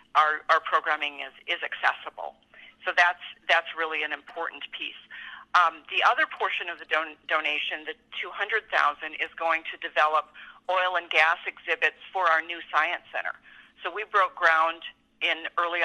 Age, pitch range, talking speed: 40-59, 155-170 Hz, 160 wpm